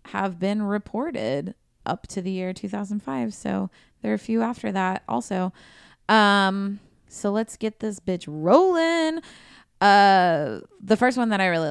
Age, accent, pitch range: 20-39, American, 175-215 Hz